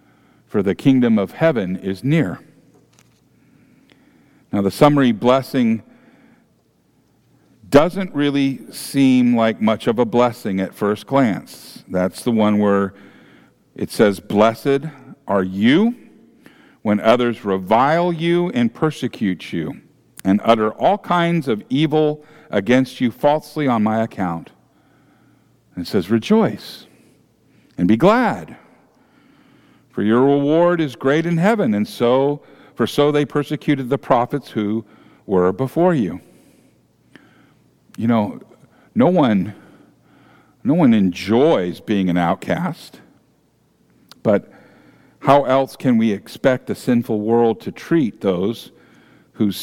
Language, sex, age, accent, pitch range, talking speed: English, male, 50-69, American, 105-150 Hz, 120 wpm